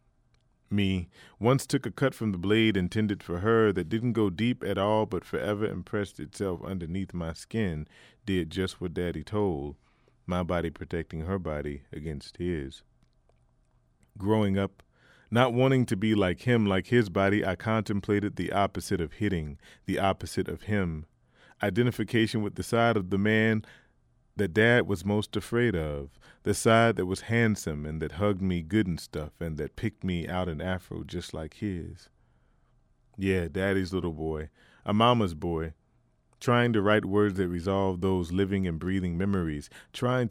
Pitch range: 85-110 Hz